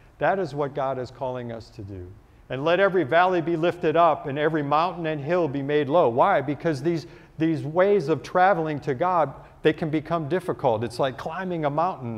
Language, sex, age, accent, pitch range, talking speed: English, male, 50-69, American, 120-165 Hz, 205 wpm